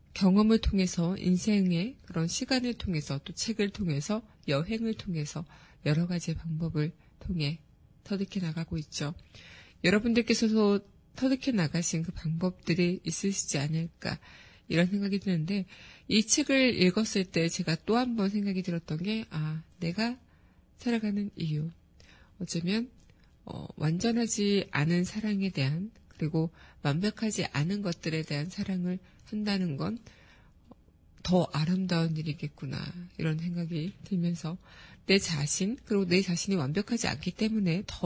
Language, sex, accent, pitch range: Korean, female, native, 165-205 Hz